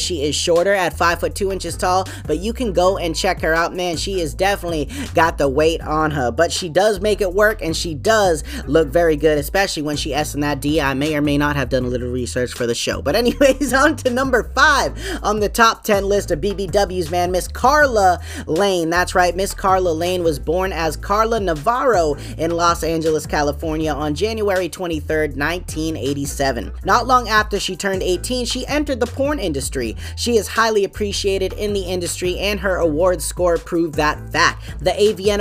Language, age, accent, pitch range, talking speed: English, 20-39, American, 165-220 Hz, 205 wpm